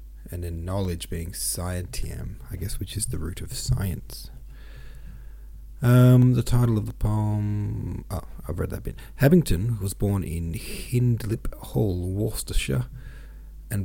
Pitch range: 85-110 Hz